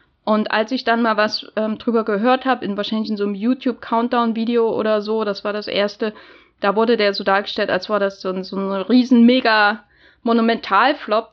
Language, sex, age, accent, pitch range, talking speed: German, female, 10-29, German, 205-245 Hz, 190 wpm